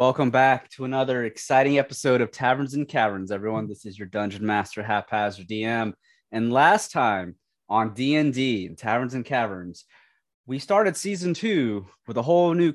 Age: 20-39